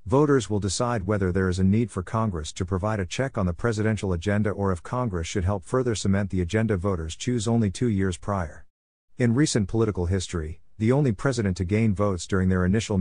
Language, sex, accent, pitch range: English, male, American, 90-115 Hz